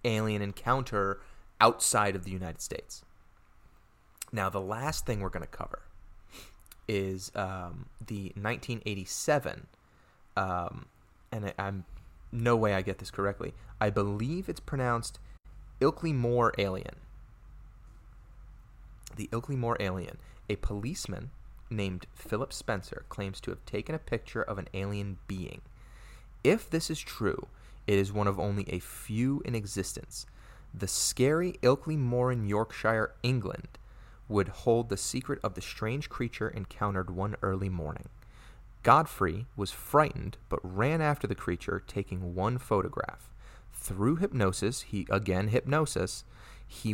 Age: 30-49